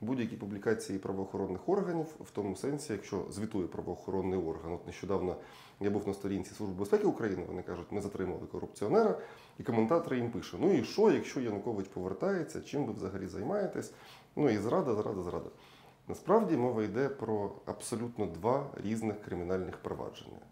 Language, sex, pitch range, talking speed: Ukrainian, male, 95-125 Hz, 155 wpm